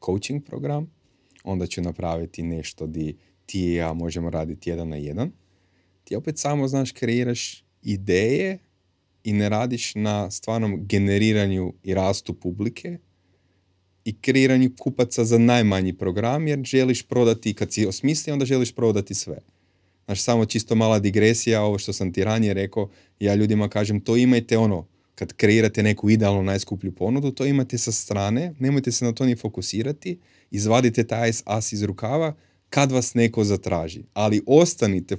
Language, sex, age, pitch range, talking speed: Croatian, male, 30-49, 95-120 Hz, 150 wpm